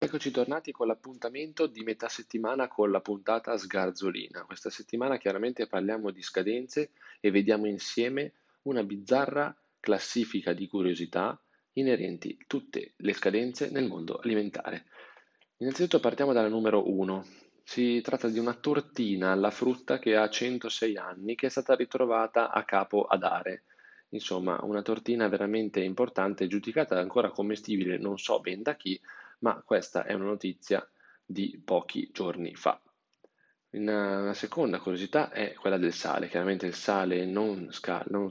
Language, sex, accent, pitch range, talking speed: Italian, male, native, 95-120 Hz, 145 wpm